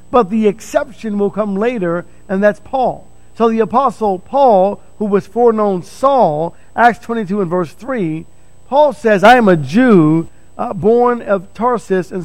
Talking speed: 160 wpm